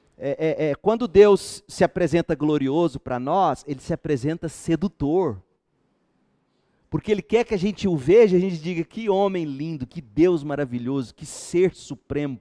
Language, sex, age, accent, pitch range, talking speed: Portuguese, male, 40-59, Brazilian, 115-155 Hz, 170 wpm